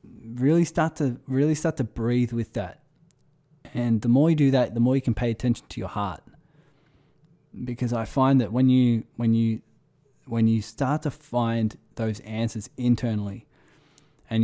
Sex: male